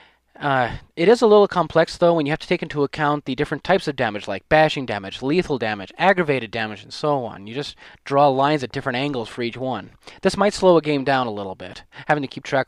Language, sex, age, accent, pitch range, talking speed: English, male, 30-49, American, 125-165 Hz, 245 wpm